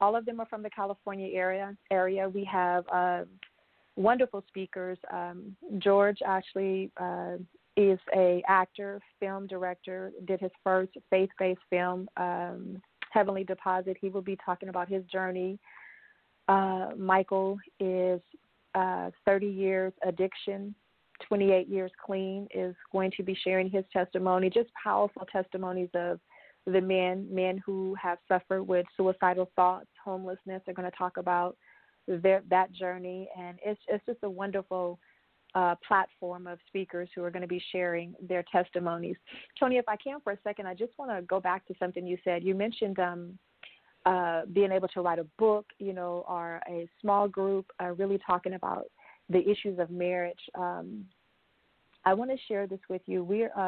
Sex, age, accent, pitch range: female, 30-49, American, 180-195 Hz